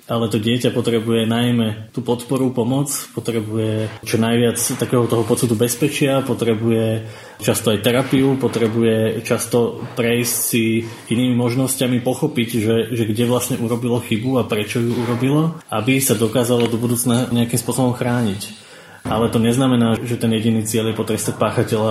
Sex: male